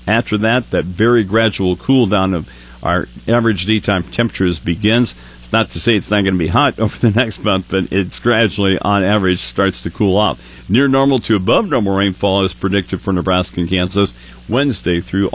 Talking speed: 195 wpm